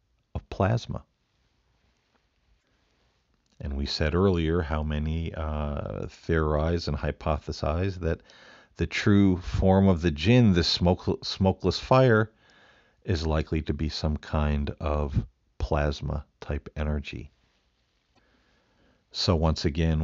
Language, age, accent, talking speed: English, 50-69, American, 110 wpm